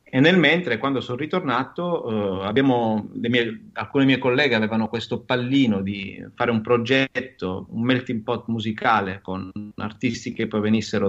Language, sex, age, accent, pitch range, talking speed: Italian, male, 30-49, native, 105-125 Hz, 140 wpm